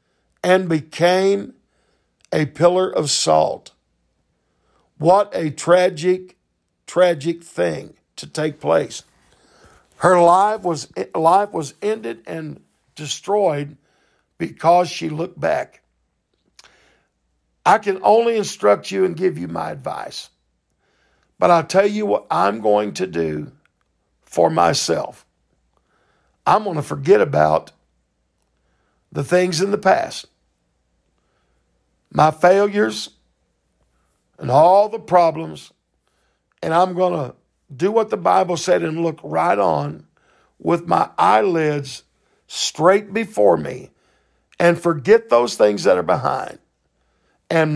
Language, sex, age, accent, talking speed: English, male, 50-69, American, 110 wpm